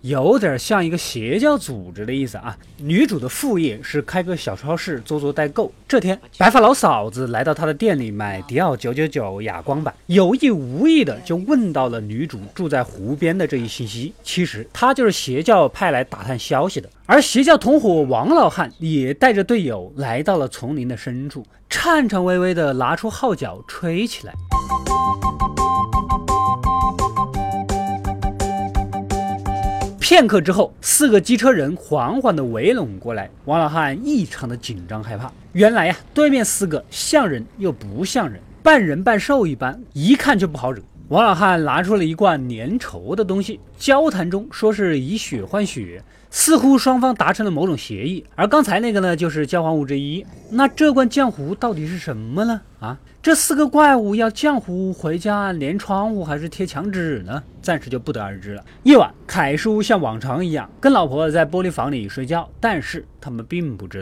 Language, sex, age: Chinese, male, 20-39